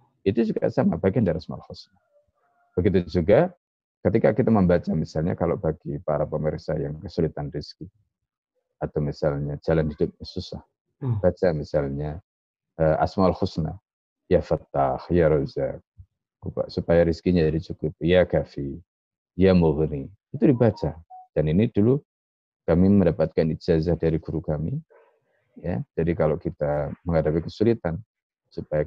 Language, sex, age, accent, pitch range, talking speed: Indonesian, male, 30-49, native, 75-100 Hz, 125 wpm